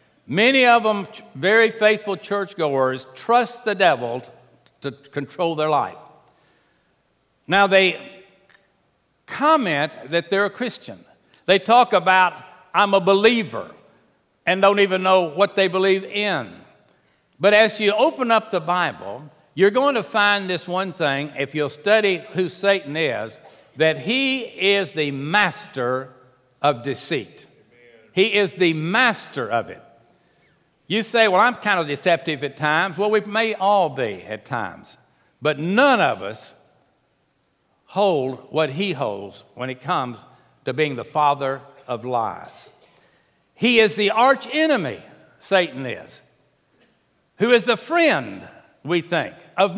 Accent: American